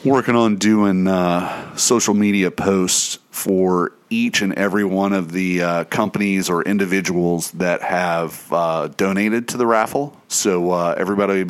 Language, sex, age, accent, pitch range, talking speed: English, male, 40-59, American, 85-100 Hz, 150 wpm